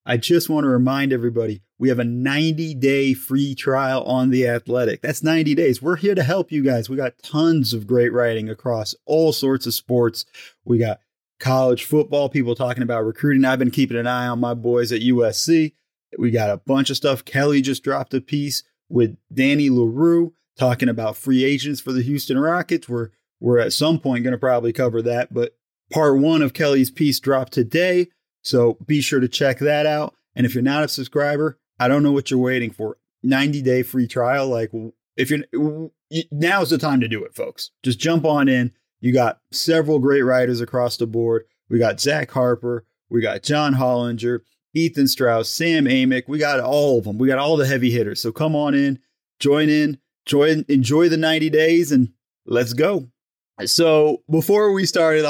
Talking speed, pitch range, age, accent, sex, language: 195 wpm, 120-150 Hz, 30-49, American, male, English